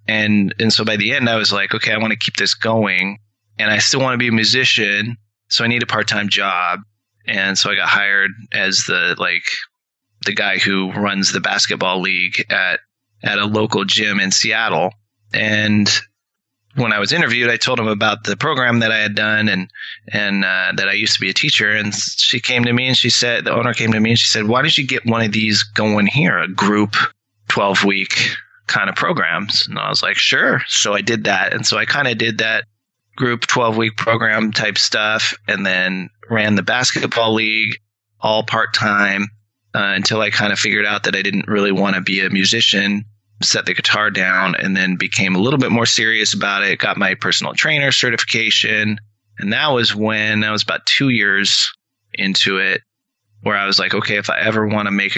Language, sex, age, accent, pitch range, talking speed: English, male, 30-49, American, 100-110 Hz, 210 wpm